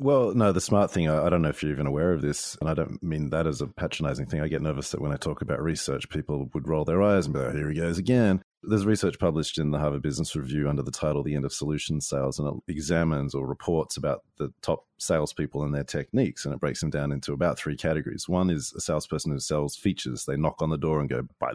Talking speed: 265 wpm